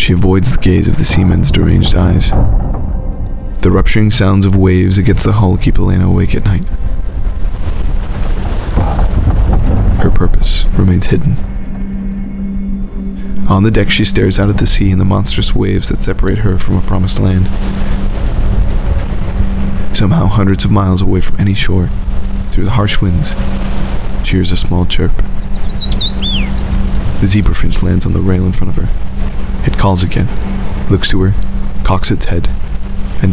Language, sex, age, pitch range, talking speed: English, male, 20-39, 90-100 Hz, 150 wpm